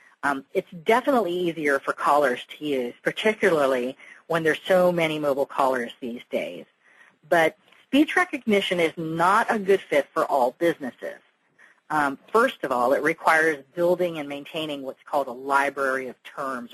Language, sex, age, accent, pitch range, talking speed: English, female, 40-59, American, 140-185 Hz, 155 wpm